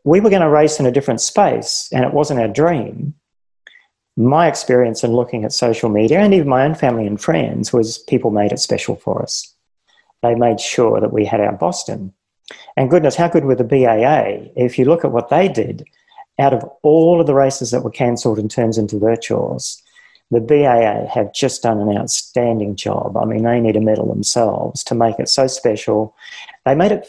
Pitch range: 115-150 Hz